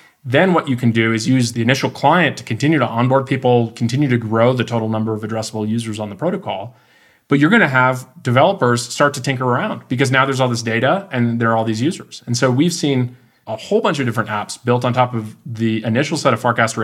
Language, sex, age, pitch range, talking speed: English, male, 30-49, 110-130 Hz, 240 wpm